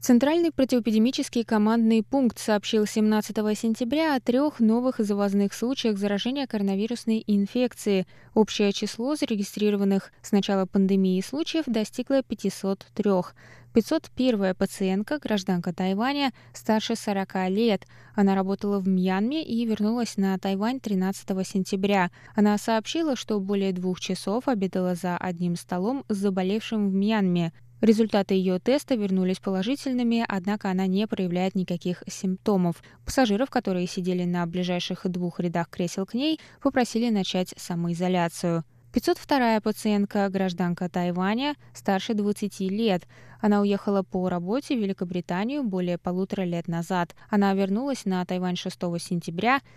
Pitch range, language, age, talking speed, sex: 185-230 Hz, Russian, 20-39, 125 wpm, female